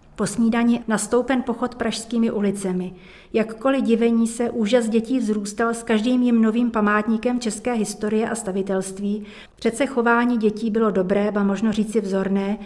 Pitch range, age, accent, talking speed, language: 205-230 Hz, 40-59, native, 140 wpm, Czech